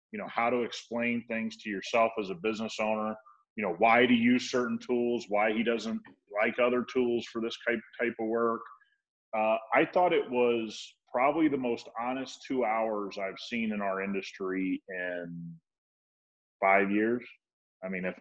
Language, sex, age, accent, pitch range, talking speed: English, male, 30-49, American, 105-120 Hz, 175 wpm